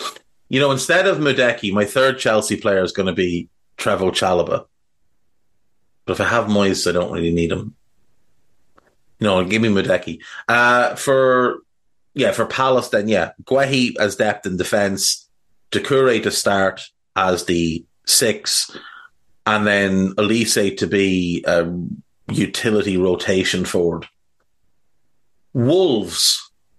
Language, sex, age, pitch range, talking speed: English, male, 30-49, 95-125 Hz, 130 wpm